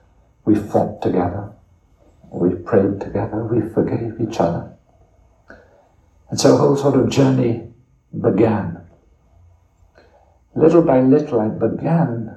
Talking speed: 110 wpm